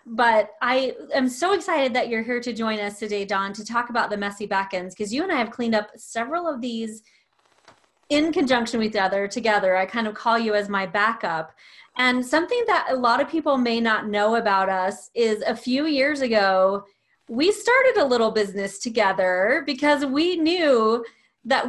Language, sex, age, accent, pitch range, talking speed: English, female, 30-49, American, 210-275 Hz, 195 wpm